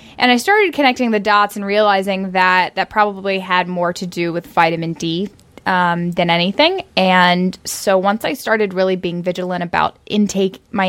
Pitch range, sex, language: 175-215 Hz, female, English